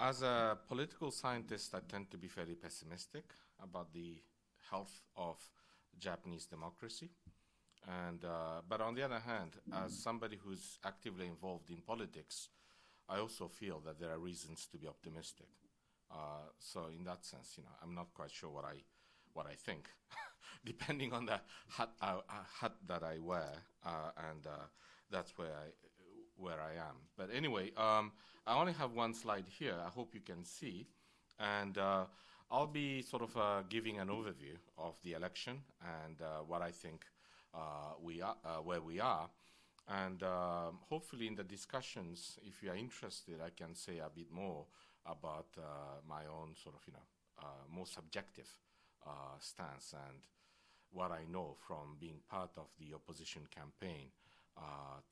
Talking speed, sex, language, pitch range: 170 wpm, male, English, 80-110 Hz